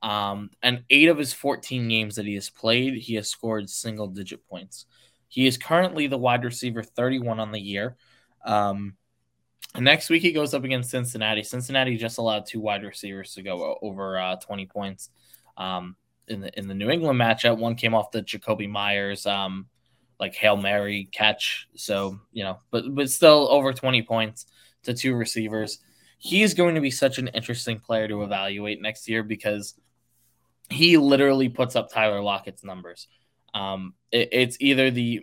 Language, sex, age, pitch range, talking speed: English, male, 10-29, 100-120 Hz, 175 wpm